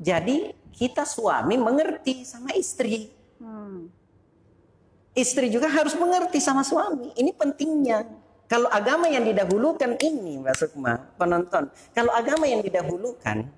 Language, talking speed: Indonesian, 110 wpm